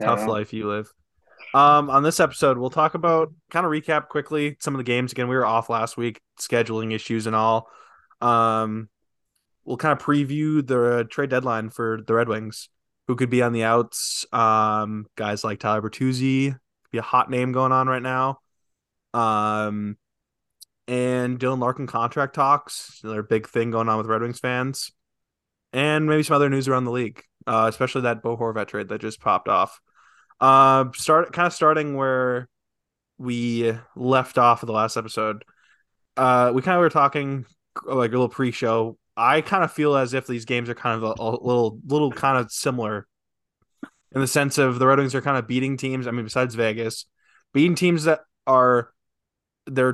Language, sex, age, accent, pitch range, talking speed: English, male, 20-39, American, 110-135 Hz, 185 wpm